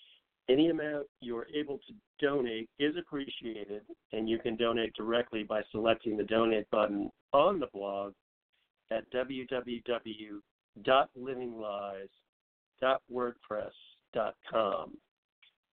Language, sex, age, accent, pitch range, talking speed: English, male, 50-69, American, 110-130 Hz, 90 wpm